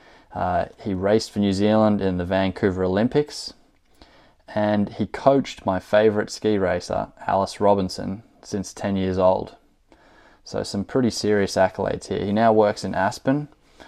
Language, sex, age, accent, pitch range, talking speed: English, male, 20-39, Australian, 95-105 Hz, 145 wpm